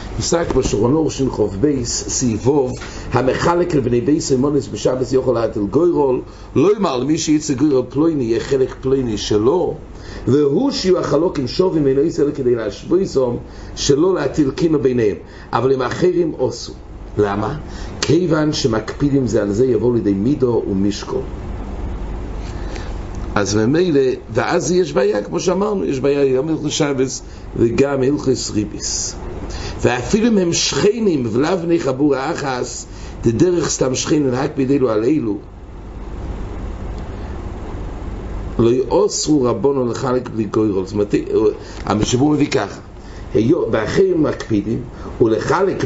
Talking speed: 115 wpm